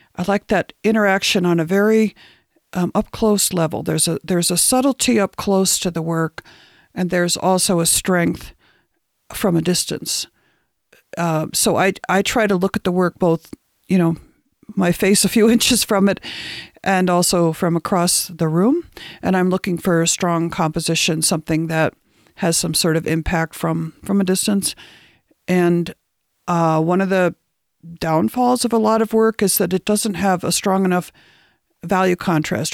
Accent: American